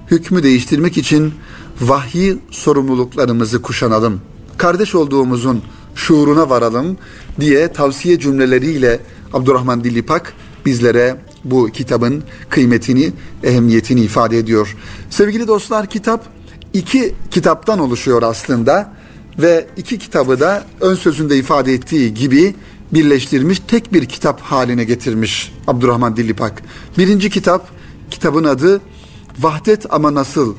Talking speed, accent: 105 wpm, native